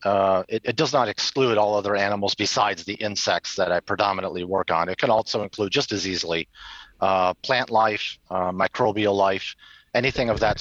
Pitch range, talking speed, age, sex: 95-115 Hz, 185 wpm, 40-59, male